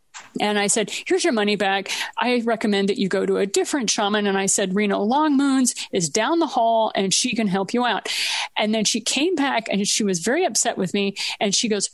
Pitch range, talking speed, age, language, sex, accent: 200-260 Hz, 235 wpm, 40-59, English, female, American